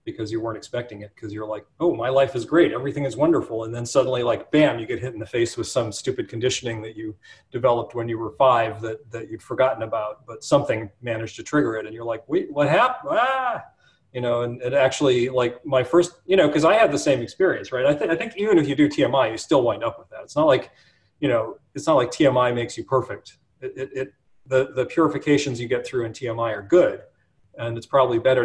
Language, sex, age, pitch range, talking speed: English, male, 30-49, 110-140 Hz, 245 wpm